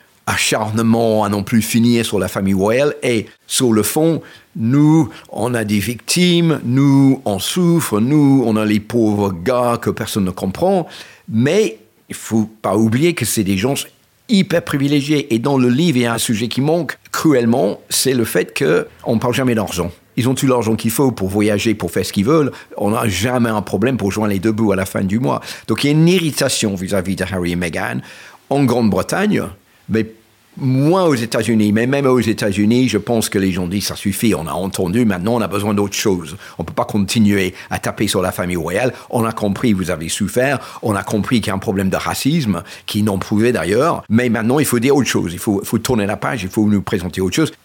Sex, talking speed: male, 225 wpm